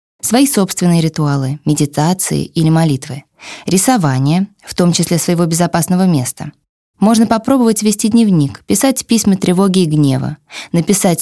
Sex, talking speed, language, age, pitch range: female, 125 wpm, Russian, 20-39, 160-200 Hz